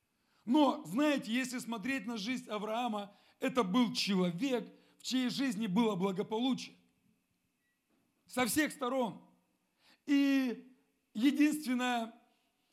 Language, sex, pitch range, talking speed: Russian, male, 205-255 Hz, 95 wpm